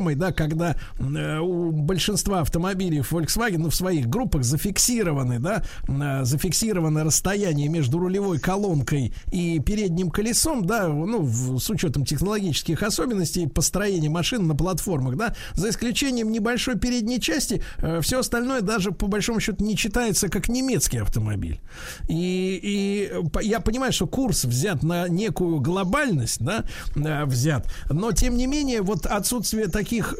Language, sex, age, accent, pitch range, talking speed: Russian, male, 50-69, native, 155-210 Hz, 145 wpm